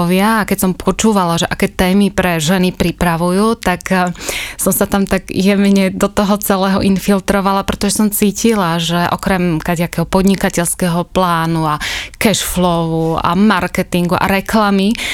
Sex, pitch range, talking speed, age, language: female, 180-200 Hz, 130 wpm, 20-39, Slovak